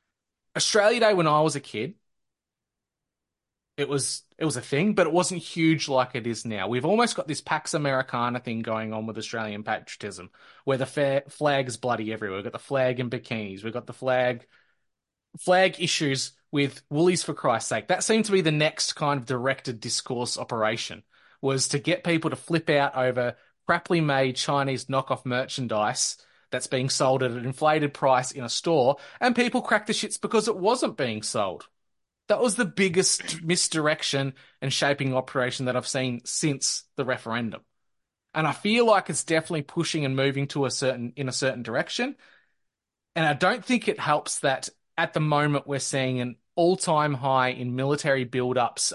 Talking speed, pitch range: 185 wpm, 125-160 Hz